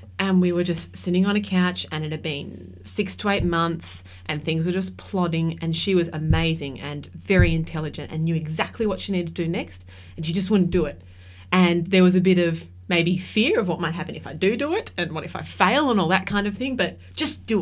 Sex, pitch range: female, 150-180 Hz